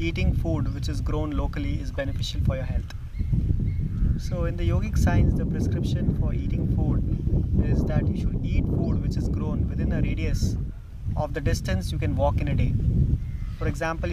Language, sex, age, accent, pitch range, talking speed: English, male, 30-49, Indian, 85-130 Hz, 185 wpm